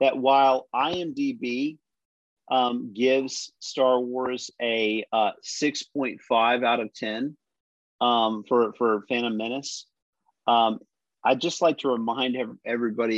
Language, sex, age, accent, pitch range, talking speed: English, male, 40-59, American, 110-130 Hz, 110 wpm